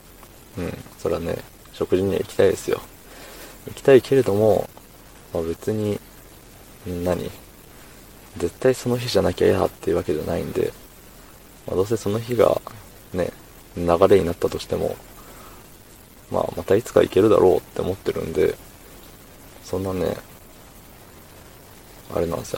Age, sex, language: 20-39, male, Japanese